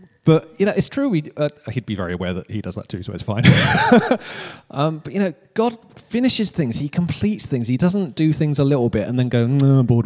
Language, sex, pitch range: English, male, 125-190 Hz